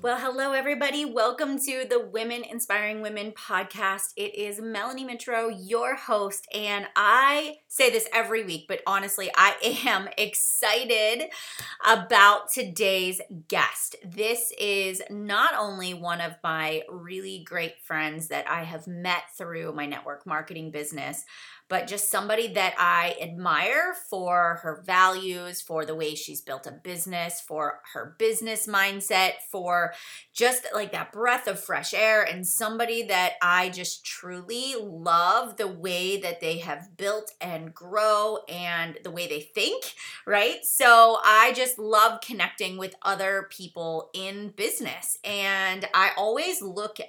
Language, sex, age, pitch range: English, female, 30-49, 170-220 Hz